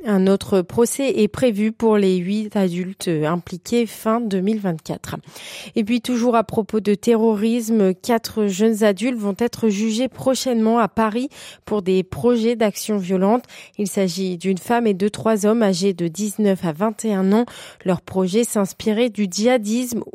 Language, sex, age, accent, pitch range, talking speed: French, female, 30-49, French, 195-240 Hz, 155 wpm